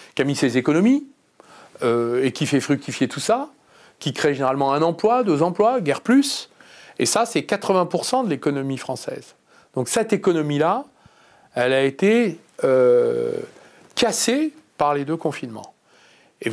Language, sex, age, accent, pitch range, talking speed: French, male, 40-59, French, 130-185 Hz, 150 wpm